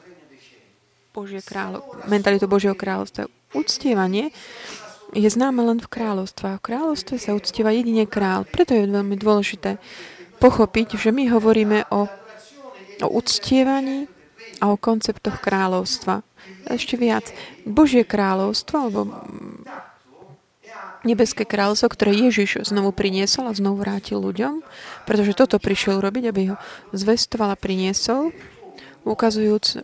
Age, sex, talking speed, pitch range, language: 30-49, female, 115 wpm, 195-235 Hz, Slovak